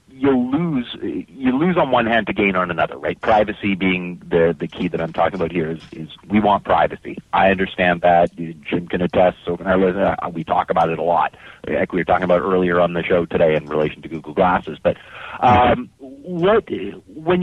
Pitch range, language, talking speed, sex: 90-125 Hz, English, 205 wpm, male